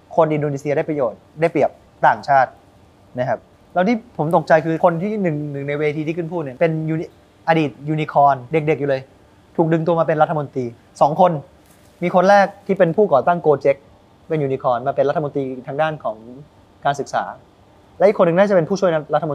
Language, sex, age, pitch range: Thai, male, 20-39, 130-165 Hz